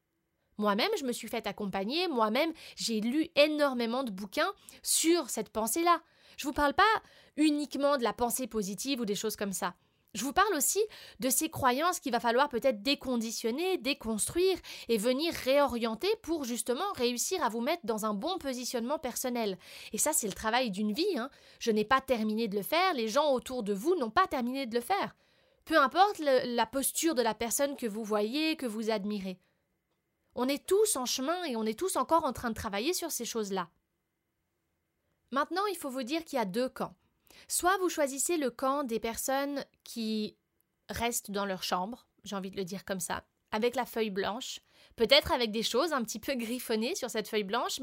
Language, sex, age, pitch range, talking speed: French, female, 20-39, 220-295 Hz, 200 wpm